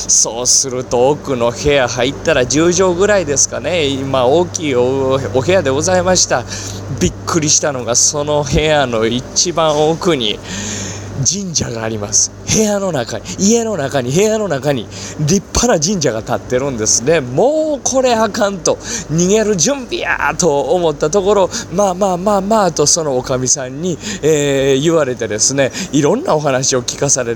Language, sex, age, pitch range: Japanese, male, 20-39, 115-195 Hz